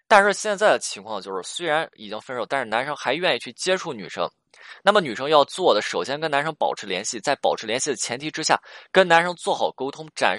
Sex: male